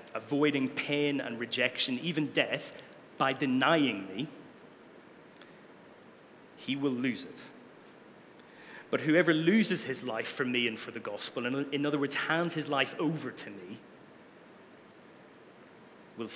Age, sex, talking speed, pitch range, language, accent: 30-49, male, 130 wpm, 120-155 Hz, English, British